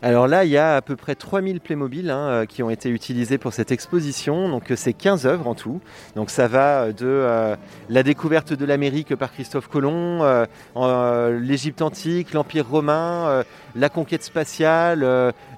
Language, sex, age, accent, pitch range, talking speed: French, male, 30-49, French, 130-170 Hz, 180 wpm